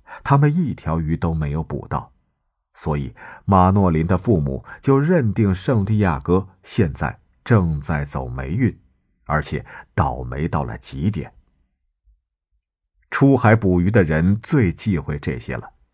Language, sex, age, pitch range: Chinese, male, 50-69, 75-110 Hz